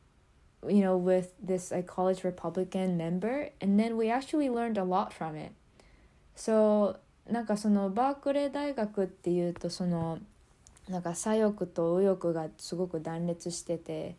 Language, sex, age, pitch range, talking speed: English, female, 20-39, 165-195 Hz, 50 wpm